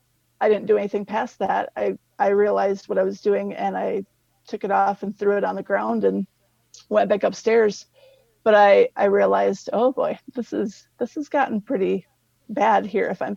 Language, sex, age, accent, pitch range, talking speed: English, female, 40-59, American, 185-230 Hz, 200 wpm